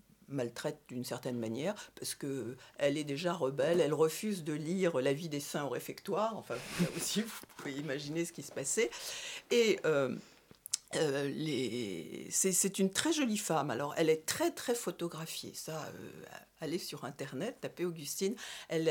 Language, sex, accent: French, female, French